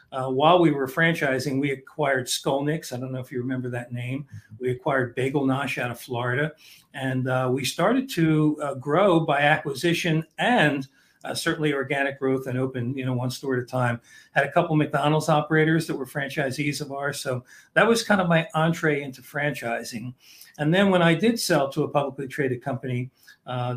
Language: English